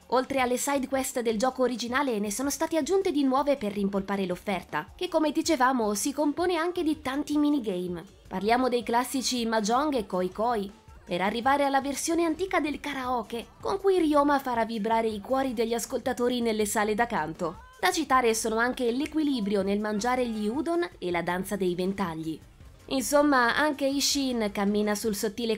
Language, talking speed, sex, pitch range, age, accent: Italian, 170 wpm, female, 205-280 Hz, 20-39, native